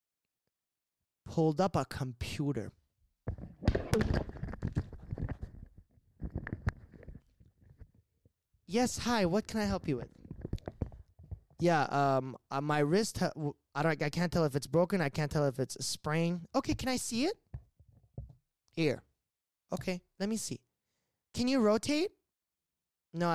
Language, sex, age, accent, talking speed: English, male, 20-39, American, 120 wpm